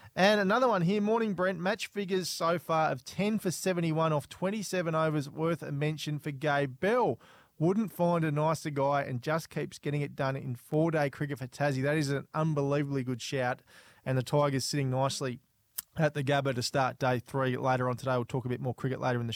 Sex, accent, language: male, Australian, English